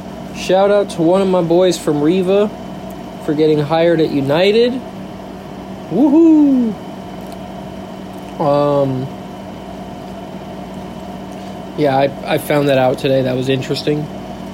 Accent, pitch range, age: American, 140-180 Hz, 20-39